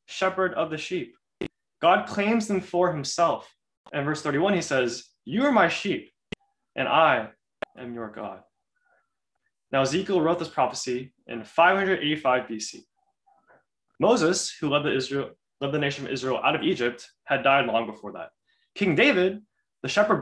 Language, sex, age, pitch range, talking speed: English, male, 20-39, 125-185 Hz, 150 wpm